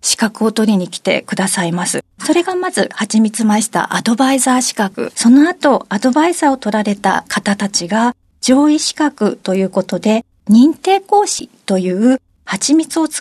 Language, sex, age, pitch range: Japanese, female, 40-59, 205-280 Hz